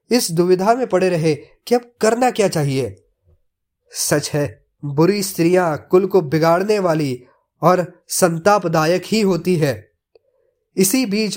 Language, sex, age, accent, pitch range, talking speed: Hindi, male, 20-39, native, 155-205 Hz, 125 wpm